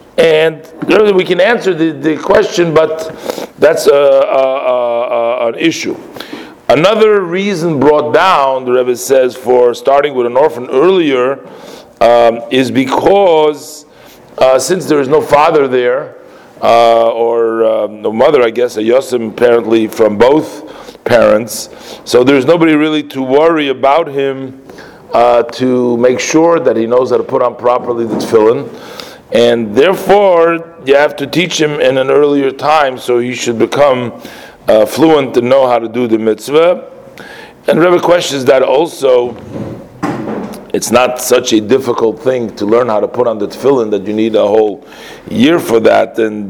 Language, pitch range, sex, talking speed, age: English, 120-160 Hz, male, 155 wpm, 40-59